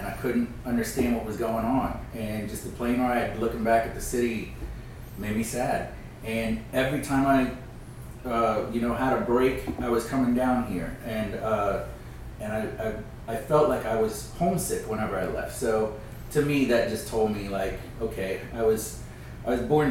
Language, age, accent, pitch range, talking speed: English, 30-49, American, 110-125 Hz, 195 wpm